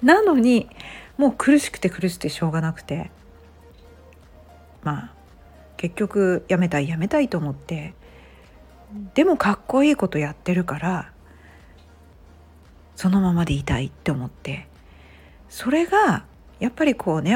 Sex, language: female, Japanese